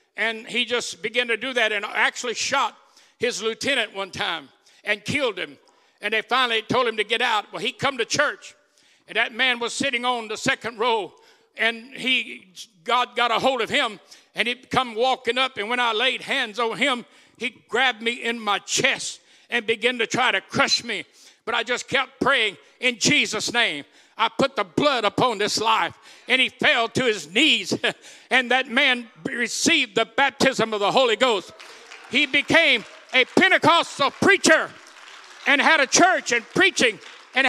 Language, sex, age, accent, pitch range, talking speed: English, male, 60-79, American, 235-305 Hz, 185 wpm